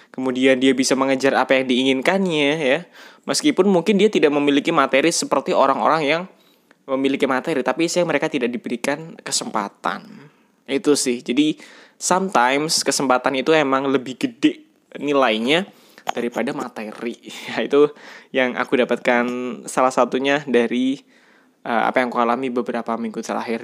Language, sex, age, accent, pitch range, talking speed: Indonesian, male, 10-29, native, 125-150 Hz, 130 wpm